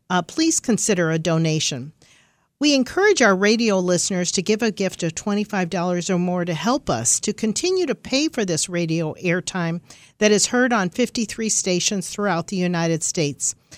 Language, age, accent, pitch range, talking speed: English, 50-69, American, 170-225 Hz, 170 wpm